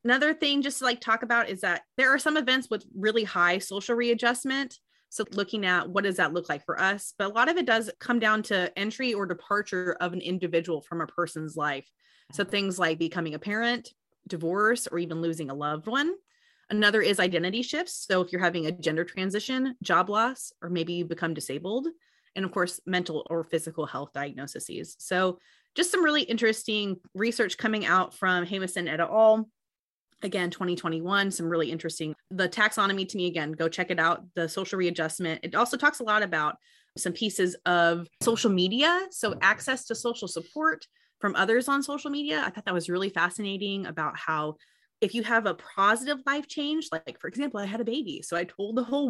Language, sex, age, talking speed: English, female, 30-49, 200 wpm